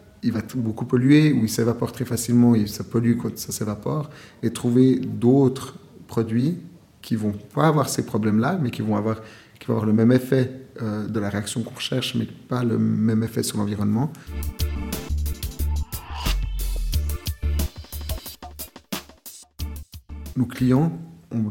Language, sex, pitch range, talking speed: French, male, 105-120 Hz, 150 wpm